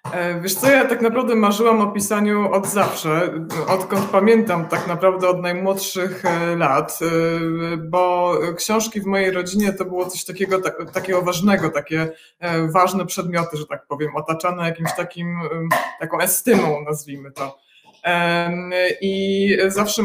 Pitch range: 170-195 Hz